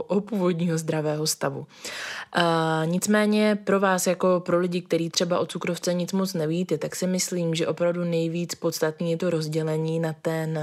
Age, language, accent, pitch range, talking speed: 20-39, Czech, native, 155-170 Hz, 170 wpm